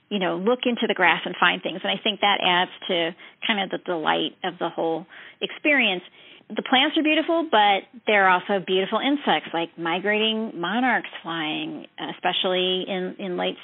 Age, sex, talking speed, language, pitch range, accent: 40-59, female, 175 wpm, English, 180-240 Hz, American